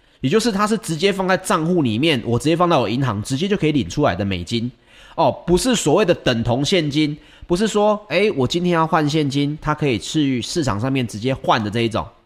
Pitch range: 115-170 Hz